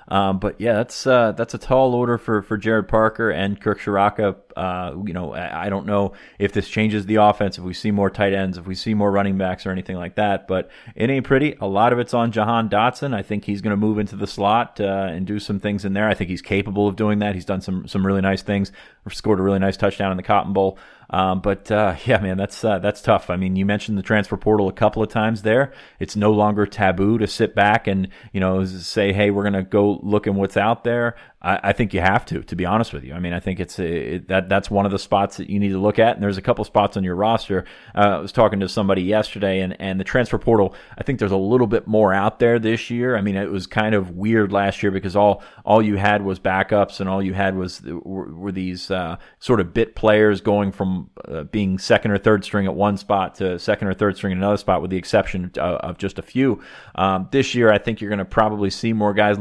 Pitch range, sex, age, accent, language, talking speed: 95-105 Hz, male, 30-49, American, English, 265 wpm